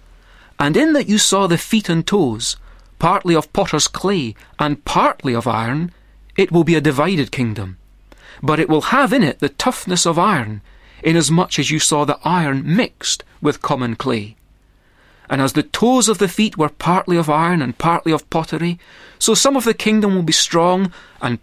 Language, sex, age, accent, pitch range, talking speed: English, male, 30-49, British, 125-185 Hz, 190 wpm